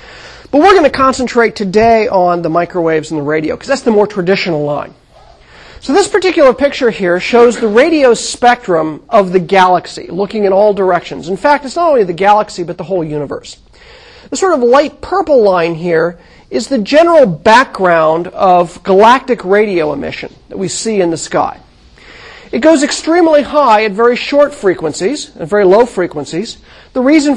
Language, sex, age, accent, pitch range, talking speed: English, male, 40-59, American, 175-255 Hz, 175 wpm